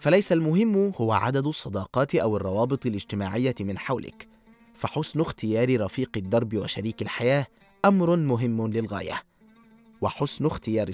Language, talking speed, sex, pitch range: Arabic, 115 wpm, male, 110-150 Hz